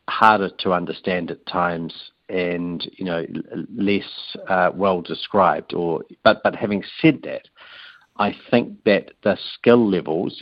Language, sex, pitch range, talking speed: English, male, 85-100 Hz, 140 wpm